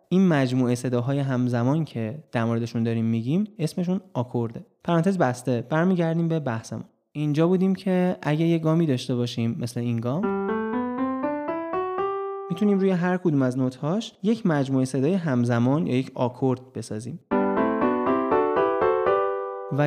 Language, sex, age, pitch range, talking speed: Persian, male, 20-39, 120-170 Hz, 125 wpm